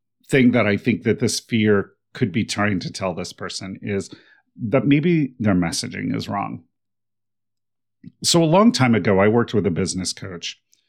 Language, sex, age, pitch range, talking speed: English, male, 40-59, 105-130 Hz, 175 wpm